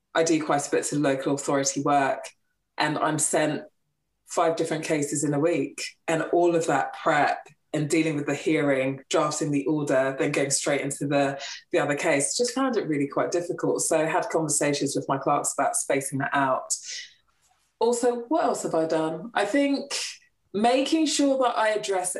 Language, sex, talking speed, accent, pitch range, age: English, female, 185 wpm, British, 145-240 Hz, 20-39